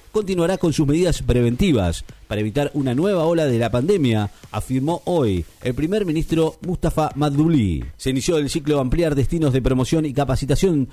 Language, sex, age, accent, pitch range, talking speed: Spanish, male, 40-59, Argentinian, 130-165 Hz, 165 wpm